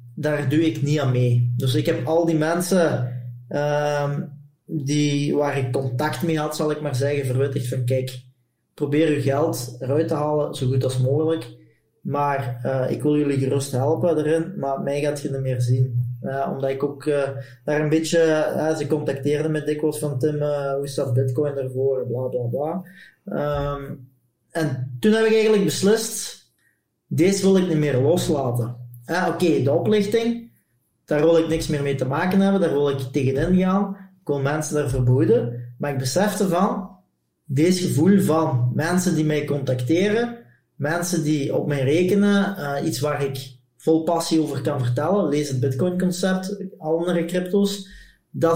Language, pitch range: English, 135-165 Hz